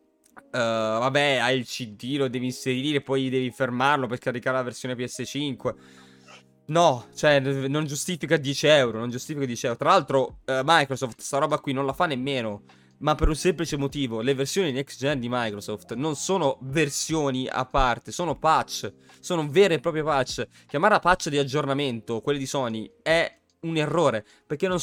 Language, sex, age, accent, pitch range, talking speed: Italian, male, 20-39, native, 120-150 Hz, 175 wpm